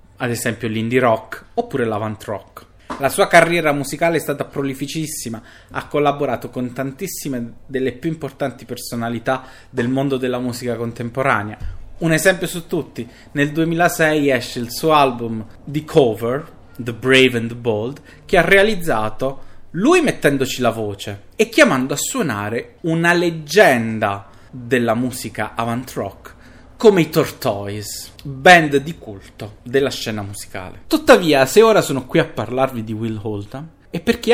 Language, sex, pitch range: Italian, male, 115-155 Hz